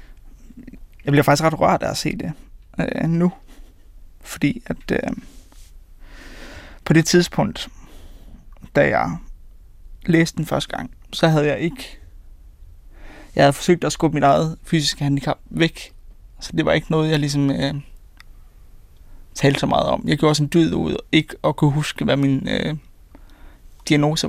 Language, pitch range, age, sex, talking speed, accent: Danish, 135-160 Hz, 20-39, male, 150 wpm, native